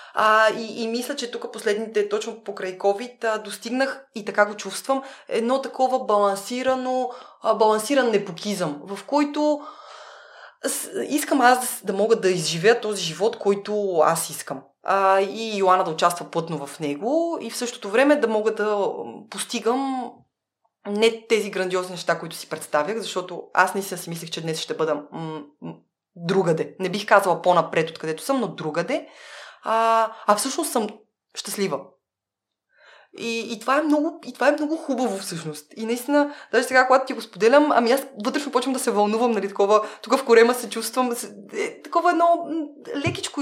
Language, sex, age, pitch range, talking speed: Bulgarian, female, 20-39, 185-250 Hz, 170 wpm